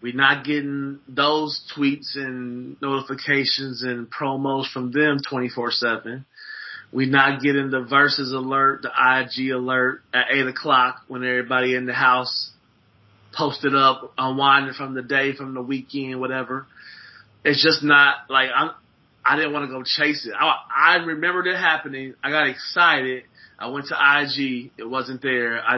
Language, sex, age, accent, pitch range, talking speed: English, male, 30-49, American, 125-140 Hz, 155 wpm